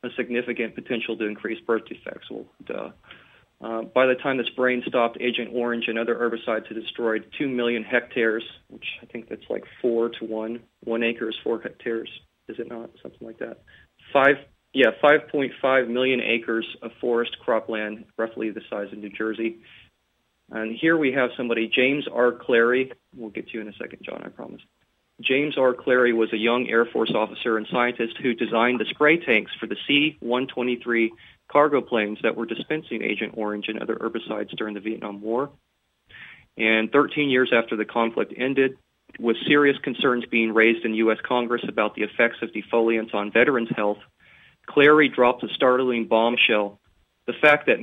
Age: 40-59